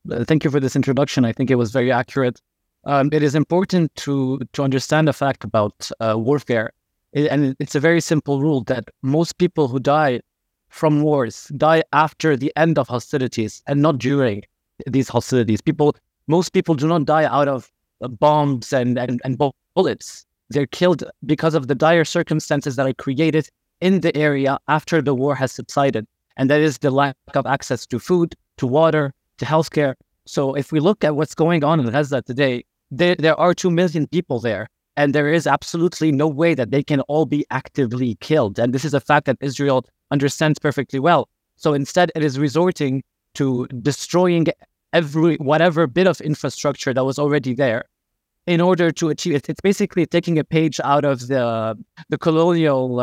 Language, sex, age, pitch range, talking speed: English, male, 30-49, 130-160 Hz, 185 wpm